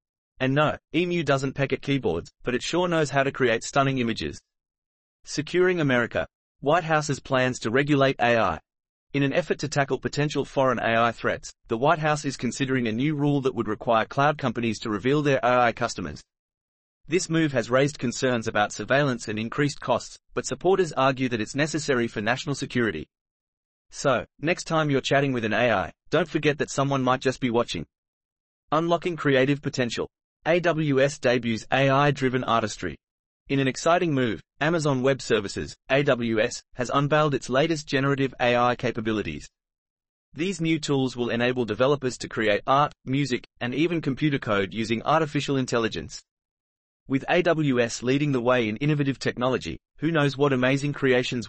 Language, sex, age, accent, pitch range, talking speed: English, male, 30-49, Australian, 120-145 Hz, 160 wpm